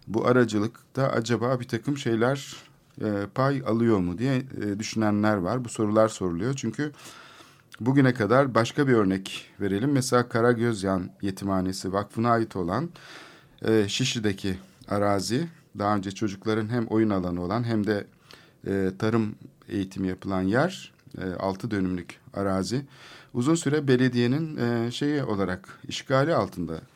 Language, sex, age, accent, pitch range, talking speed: Turkish, male, 50-69, native, 95-130 Hz, 130 wpm